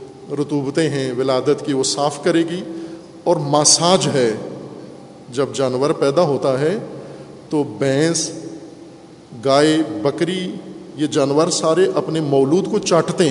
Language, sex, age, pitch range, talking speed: Urdu, male, 50-69, 150-190 Hz, 120 wpm